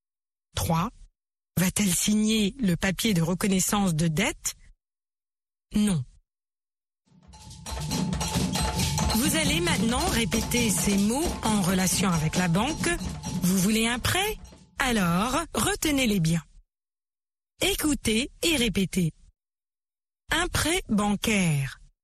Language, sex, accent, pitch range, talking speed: French, female, French, 180-220 Hz, 95 wpm